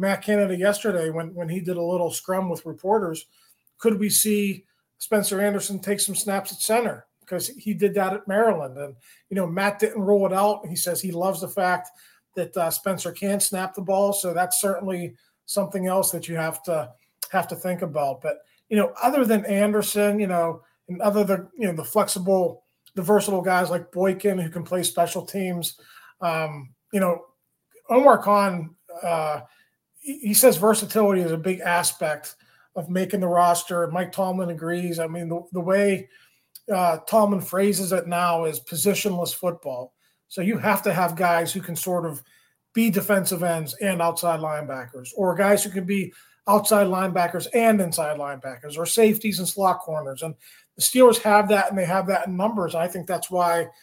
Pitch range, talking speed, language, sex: 170-200 Hz, 185 wpm, English, male